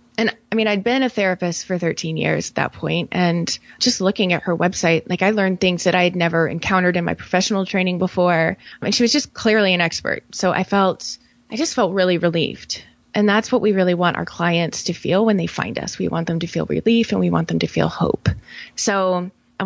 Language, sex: English, female